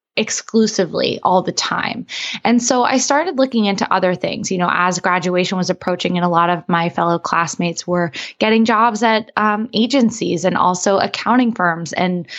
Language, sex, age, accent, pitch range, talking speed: English, female, 20-39, American, 180-225 Hz, 175 wpm